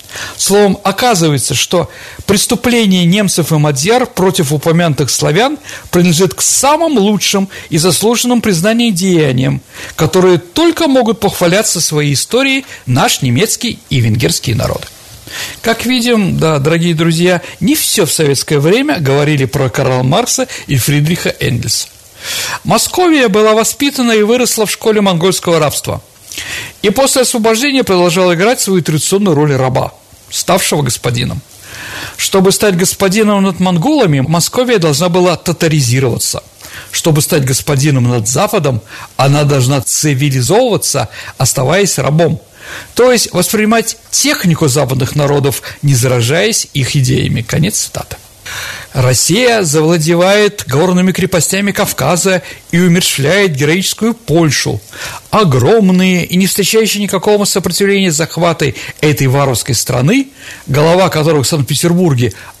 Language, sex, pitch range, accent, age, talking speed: Russian, male, 145-205 Hz, native, 50-69, 115 wpm